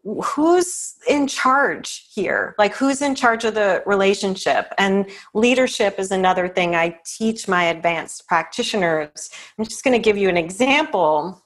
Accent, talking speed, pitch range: American, 150 wpm, 170-210 Hz